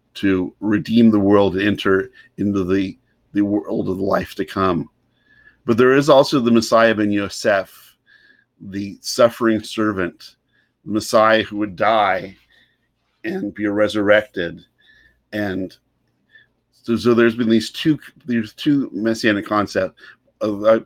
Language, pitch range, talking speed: English, 95-115 Hz, 125 wpm